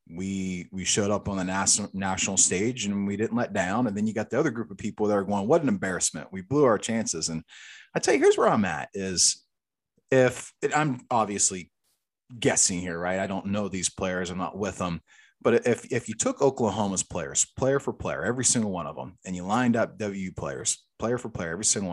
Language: English